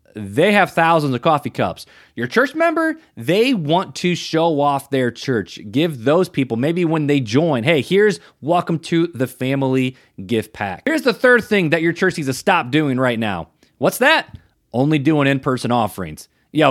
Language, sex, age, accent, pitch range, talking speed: English, male, 30-49, American, 135-195 Hz, 185 wpm